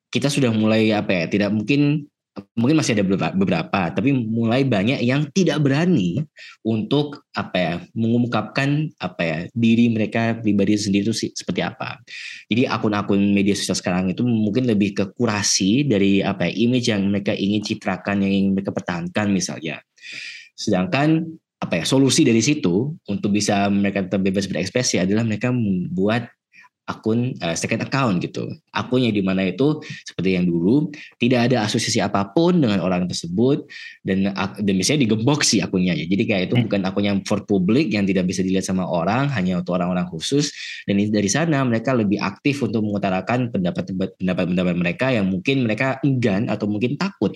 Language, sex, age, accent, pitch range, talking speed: Indonesian, male, 20-39, native, 100-130 Hz, 160 wpm